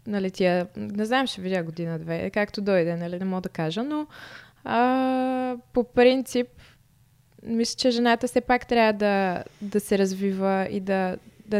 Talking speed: 165 wpm